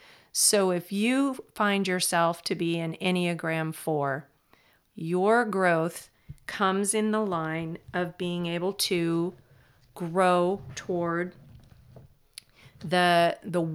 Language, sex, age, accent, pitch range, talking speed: English, female, 40-59, American, 170-200 Hz, 105 wpm